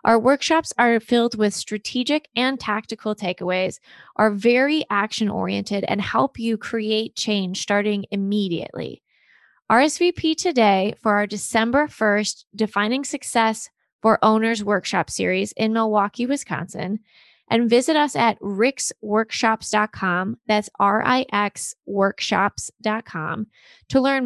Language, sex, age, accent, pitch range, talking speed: English, female, 20-39, American, 205-245 Hz, 115 wpm